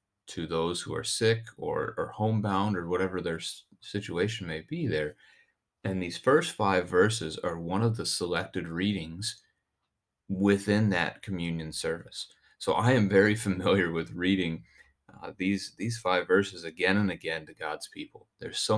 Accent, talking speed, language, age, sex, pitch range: American, 160 wpm, English, 30-49, male, 85-110 Hz